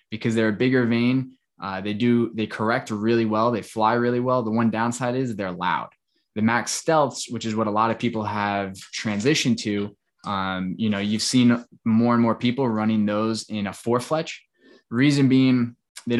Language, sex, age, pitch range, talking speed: English, male, 20-39, 100-120 Hz, 195 wpm